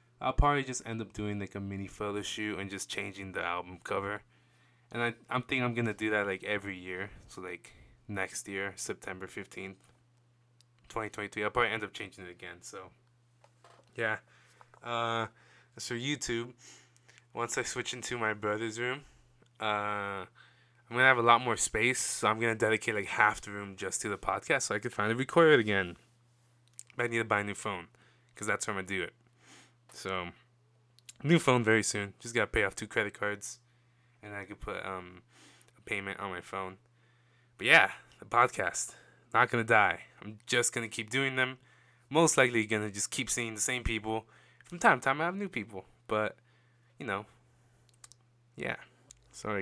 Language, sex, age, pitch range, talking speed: English, male, 20-39, 100-120 Hz, 195 wpm